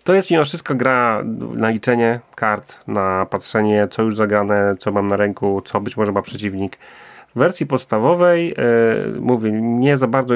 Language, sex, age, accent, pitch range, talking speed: Polish, male, 30-49, native, 105-135 Hz, 170 wpm